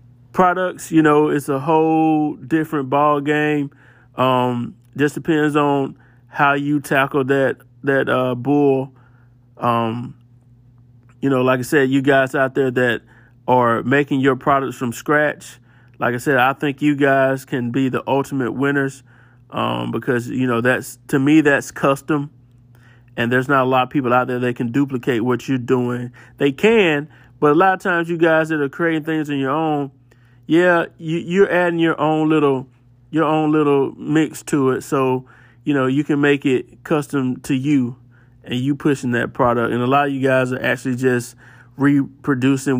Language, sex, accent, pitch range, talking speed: English, male, American, 125-150 Hz, 180 wpm